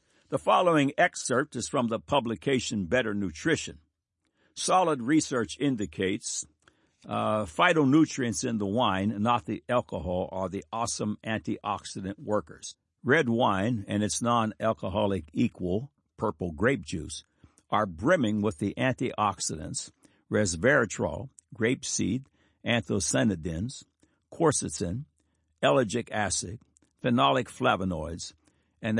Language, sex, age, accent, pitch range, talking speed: English, male, 60-79, American, 95-130 Hz, 100 wpm